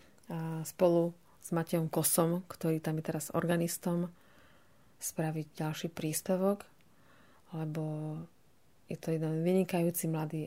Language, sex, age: Slovak, female, 30-49